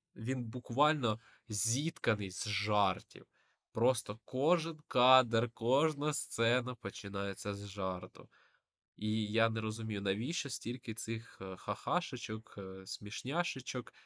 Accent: native